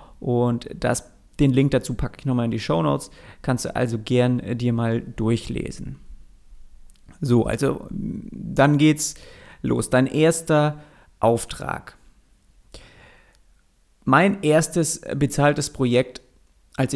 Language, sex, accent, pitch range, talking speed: German, male, German, 120-145 Hz, 115 wpm